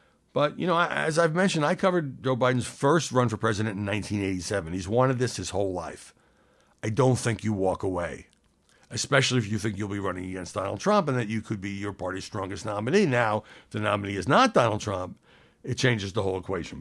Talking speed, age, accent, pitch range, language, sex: 215 wpm, 60-79, American, 95-125 Hz, English, male